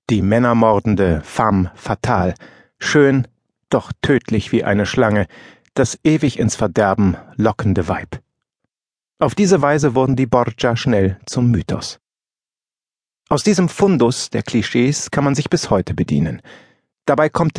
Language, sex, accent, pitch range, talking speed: German, male, German, 110-145 Hz, 130 wpm